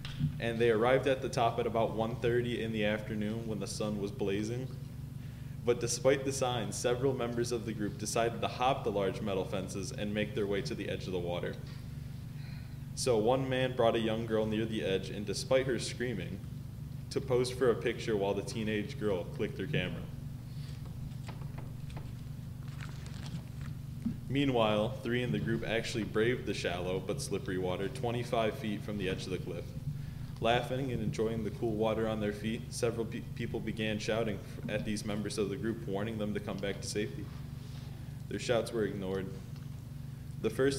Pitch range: 110-135 Hz